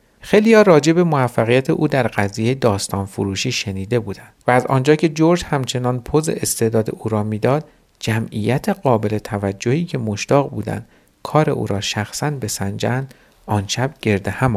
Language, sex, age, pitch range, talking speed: Persian, male, 50-69, 105-145 Hz, 150 wpm